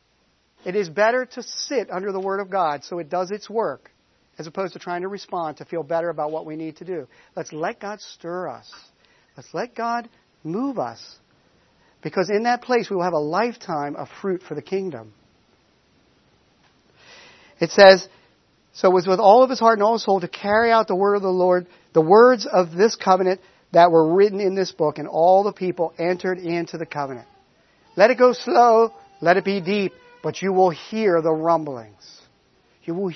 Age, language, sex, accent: 50-69, English, male, American